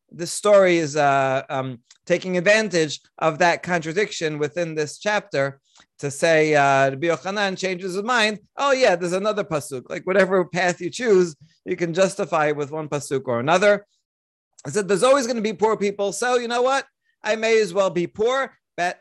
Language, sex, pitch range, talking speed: English, male, 150-200 Hz, 185 wpm